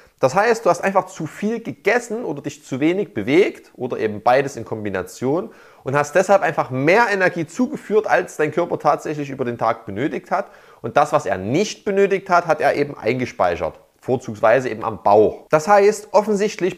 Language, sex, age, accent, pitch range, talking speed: German, male, 30-49, German, 145-205 Hz, 185 wpm